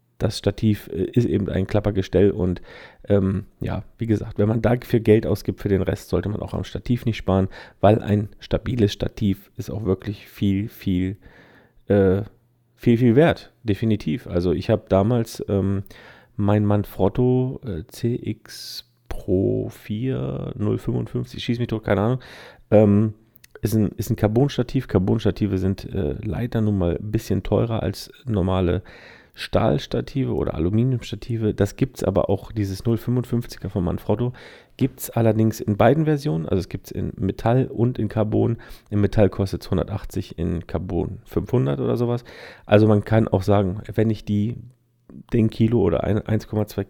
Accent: German